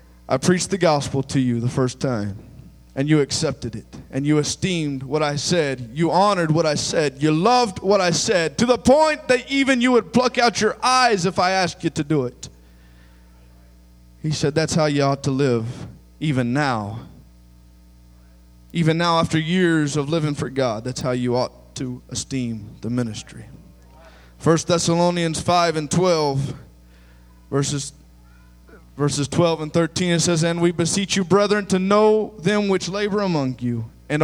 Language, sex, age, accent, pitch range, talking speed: English, male, 20-39, American, 115-180 Hz, 170 wpm